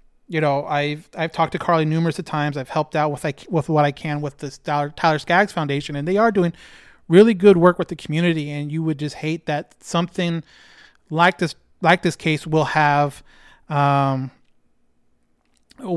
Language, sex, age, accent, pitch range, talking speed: English, male, 30-49, American, 140-175 Hz, 180 wpm